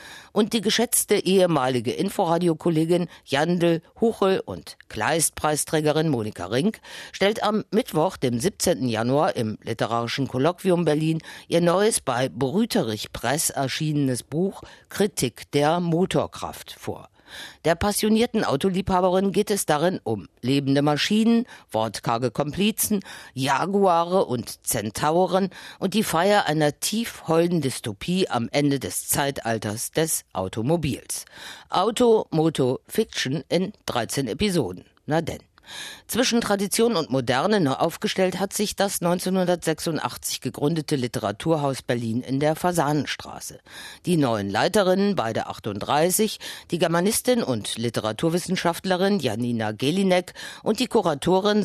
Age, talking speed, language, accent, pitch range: 50-69, 110 wpm, German, German, 130-190 Hz